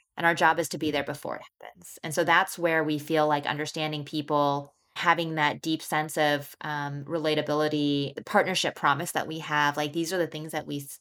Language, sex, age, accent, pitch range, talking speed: English, female, 20-39, American, 150-175 Hz, 205 wpm